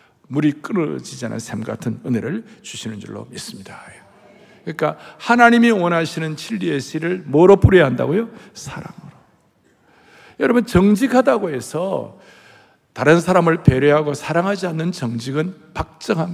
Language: Korean